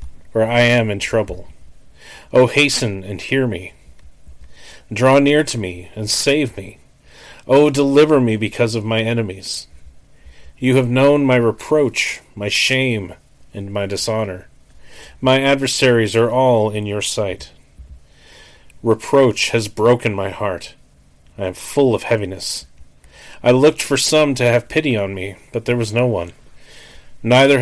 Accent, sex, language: American, male, English